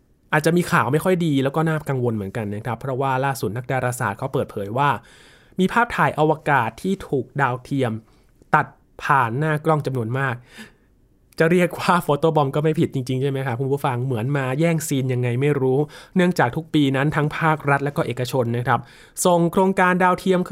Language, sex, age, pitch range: Thai, male, 20-39, 125-165 Hz